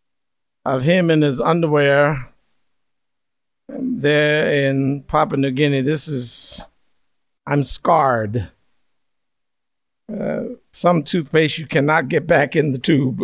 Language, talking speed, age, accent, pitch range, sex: English, 110 wpm, 50-69, American, 145-170 Hz, male